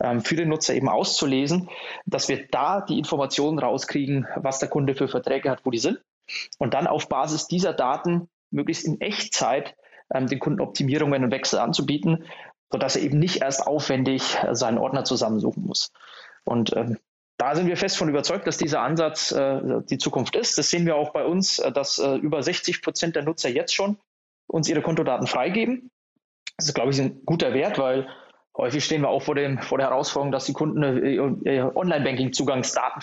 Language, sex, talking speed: German, male, 185 wpm